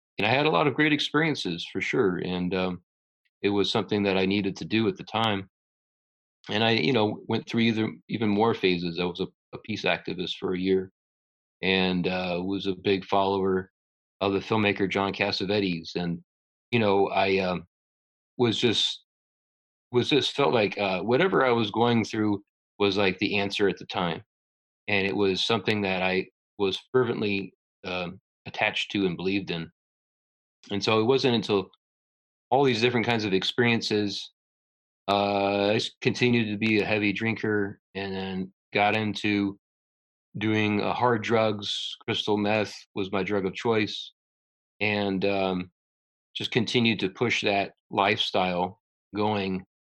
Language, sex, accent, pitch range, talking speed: English, male, American, 95-110 Hz, 160 wpm